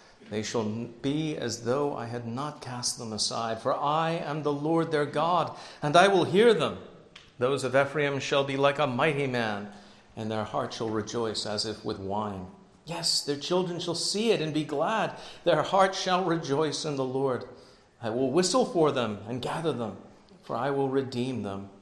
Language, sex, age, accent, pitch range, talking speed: English, male, 50-69, American, 120-155 Hz, 195 wpm